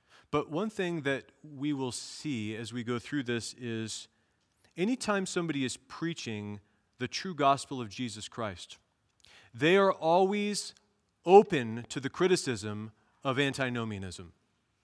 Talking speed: 130 wpm